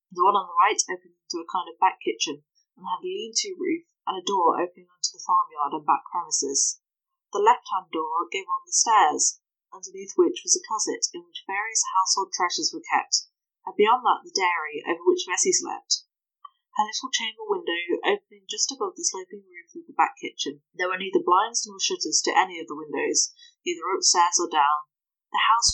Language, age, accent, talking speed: English, 10-29, British, 205 wpm